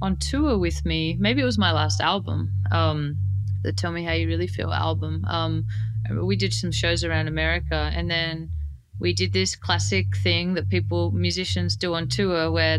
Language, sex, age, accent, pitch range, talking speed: English, female, 20-39, Australian, 85-110 Hz, 190 wpm